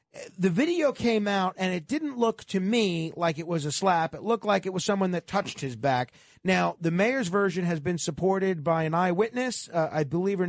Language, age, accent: English, 40-59, American